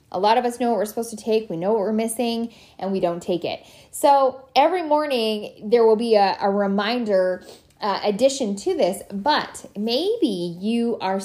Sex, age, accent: female, 10-29, American